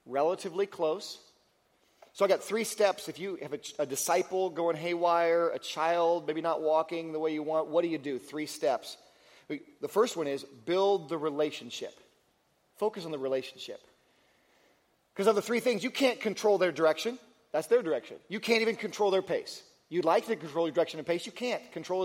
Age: 40-59